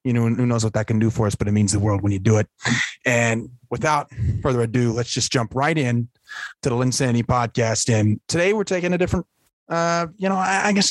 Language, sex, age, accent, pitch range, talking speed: English, male, 30-49, American, 105-125 Hz, 240 wpm